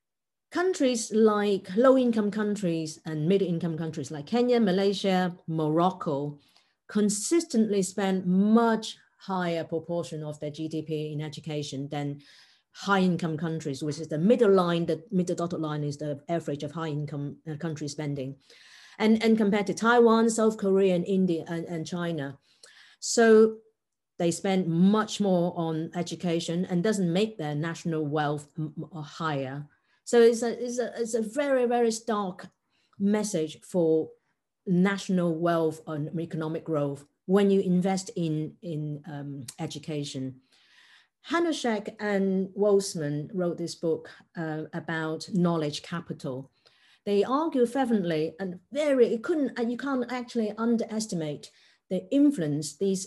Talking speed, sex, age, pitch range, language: 130 wpm, female, 40-59, 155-210 Hz, English